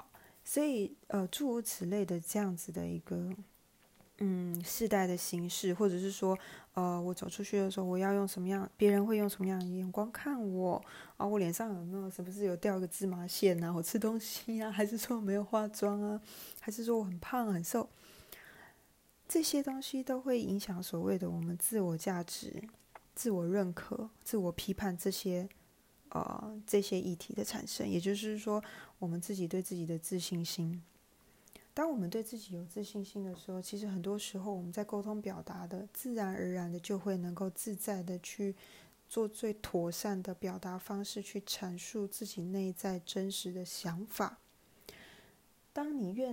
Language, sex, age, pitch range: Chinese, female, 20-39, 180-215 Hz